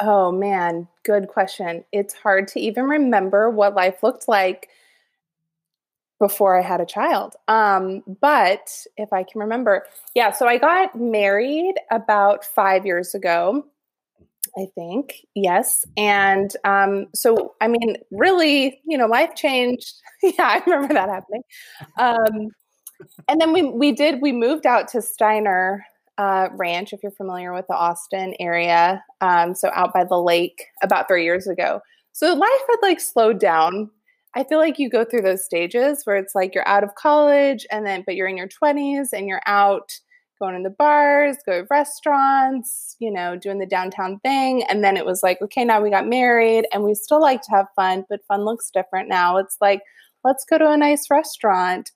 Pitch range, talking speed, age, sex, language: 190-275 Hz, 180 wpm, 20-39, female, English